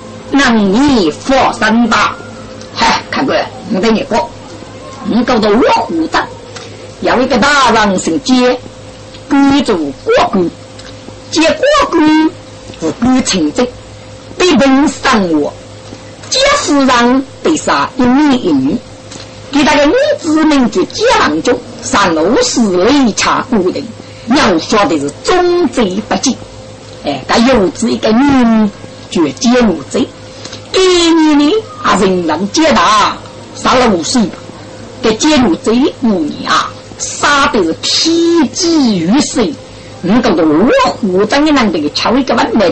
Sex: female